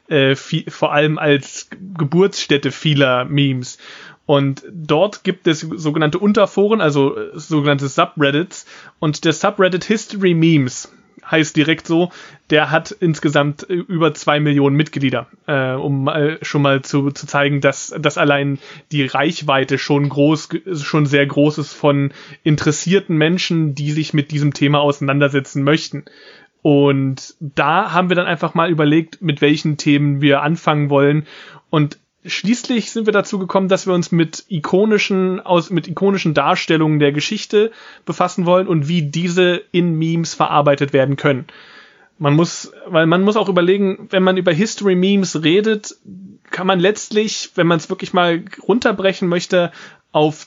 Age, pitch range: 30-49, 145-185 Hz